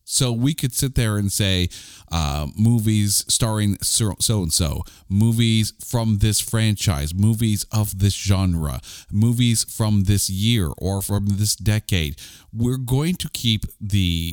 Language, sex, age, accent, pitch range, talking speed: English, male, 40-59, American, 90-120 Hz, 140 wpm